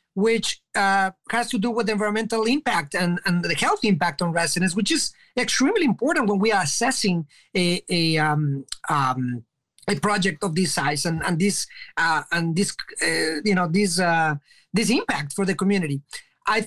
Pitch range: 190-230 Hz